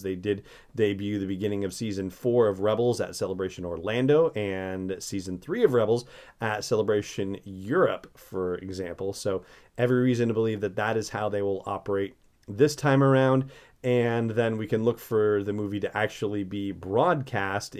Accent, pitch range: American, 100-125 Hz